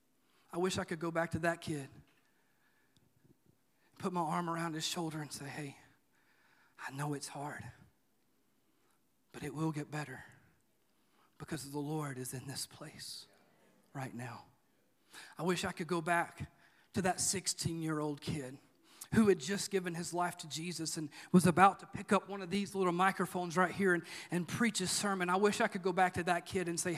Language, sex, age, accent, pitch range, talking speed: English, male, 40-59, American, 175-255 Hz, 185 wpm